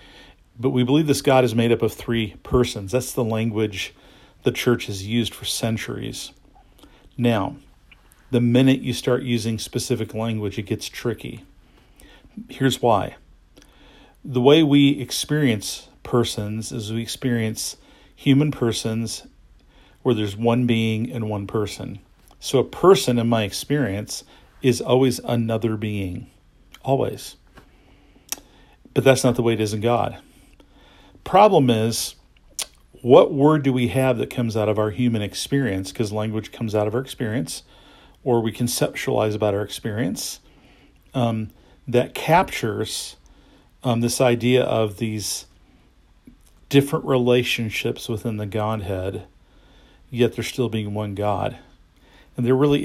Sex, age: male, 40-59